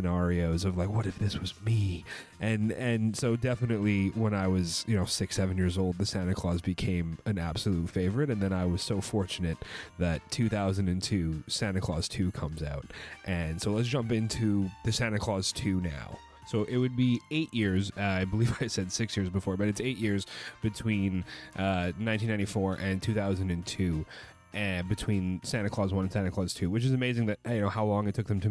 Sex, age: male, 30-49